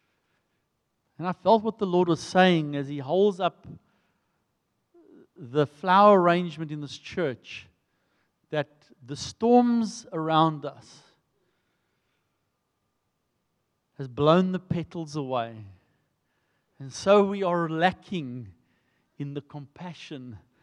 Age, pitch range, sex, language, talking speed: 50-69, 140-200 Hz, male, English, 105 wpm